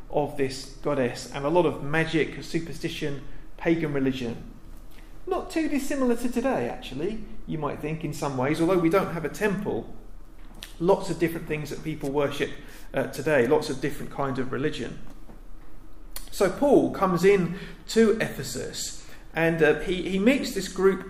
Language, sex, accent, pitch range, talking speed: English, male, British, 145-195 Hz, 160 wpm